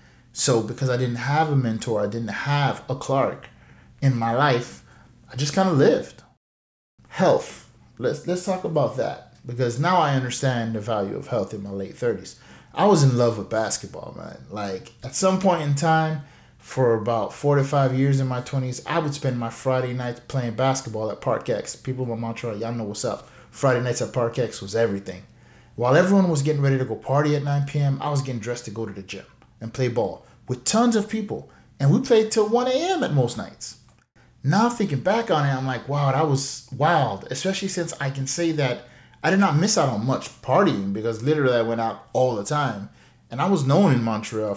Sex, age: male, 30-49